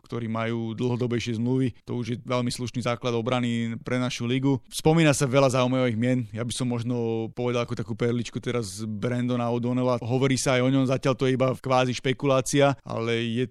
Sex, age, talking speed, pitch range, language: male, 30-49, 200 wpm, 120-130 Hz, Slovak